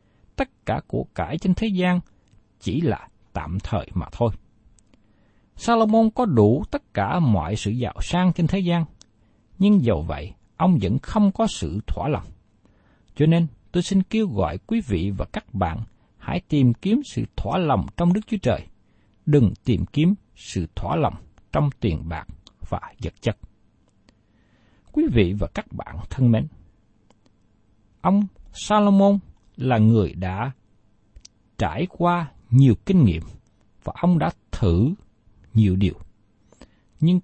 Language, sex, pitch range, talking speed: Vietnamese, male, 100-170 Hz, 150 wpm